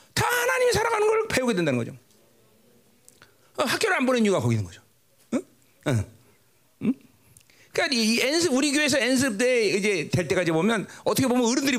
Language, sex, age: Korean, male, 40-59